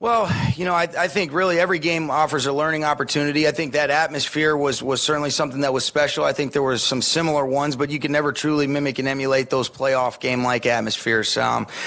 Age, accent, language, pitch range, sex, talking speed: 30-49, American, English, 130-145 Hz, male, 220 wpm